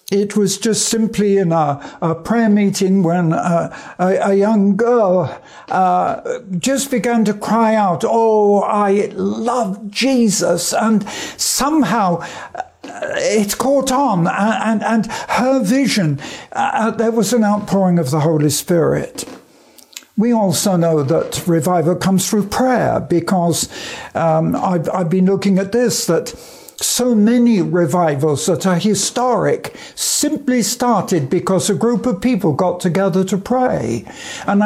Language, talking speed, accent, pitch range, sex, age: English, 135 wpm, British, 175-225 Hz, male, 60-79